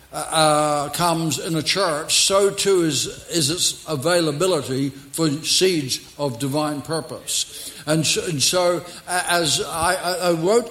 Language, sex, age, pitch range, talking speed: English, male, 60-79, 150-190 Hz, 135 wpm